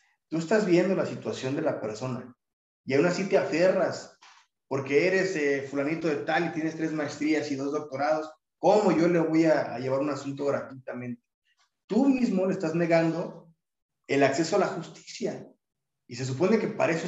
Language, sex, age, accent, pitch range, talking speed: Spanish, male, 30-49, Mexican, 135-175 Hz, 185 wpm